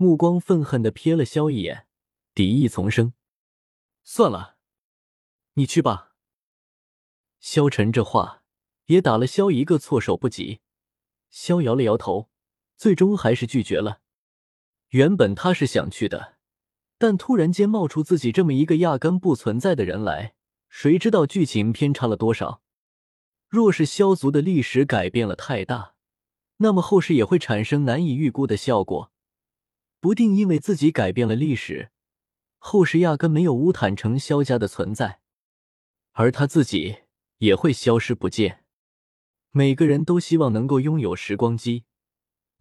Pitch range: 110-170 Hz